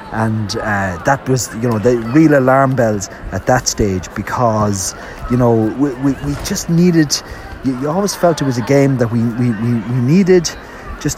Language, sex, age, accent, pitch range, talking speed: English, male, 30-49, Irish, 110-140 Hz, 190 wpm